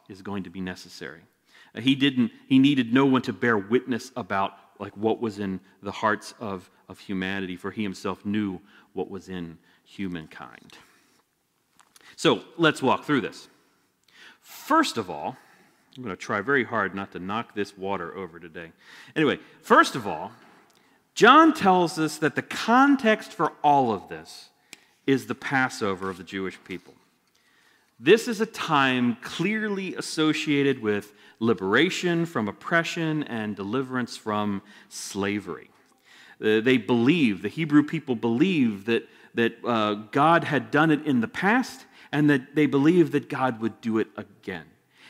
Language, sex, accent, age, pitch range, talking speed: English, male, American, 40-59, 100-160 Hz, 150 wpm